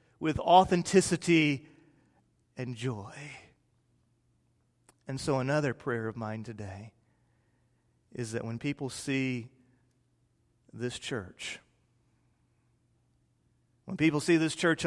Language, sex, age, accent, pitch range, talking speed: English, male, 40-59, American, 125-190 Hz, 95 wpm